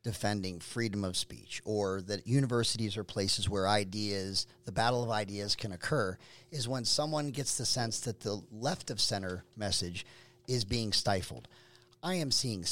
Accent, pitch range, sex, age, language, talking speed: American, 110-140 Hz, male, 40-59, English, 165 wpm